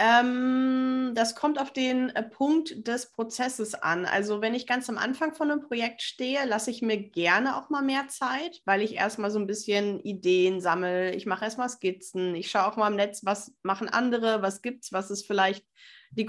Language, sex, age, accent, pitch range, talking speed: German, female, 20-39, German, 200-245 Hz, 200 wpm